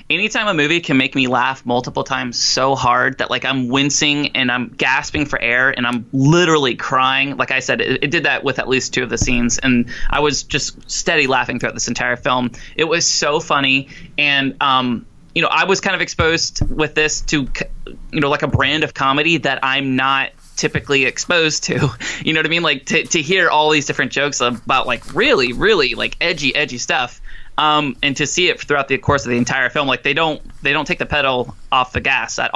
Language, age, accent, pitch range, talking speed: English, 20-39, American, 130-155 Hz, 225 wpm